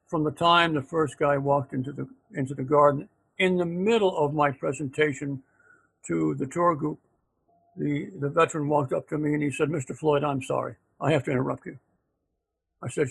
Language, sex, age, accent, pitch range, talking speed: English, male, 60-79, American, 145-180 Hz, 195 wpm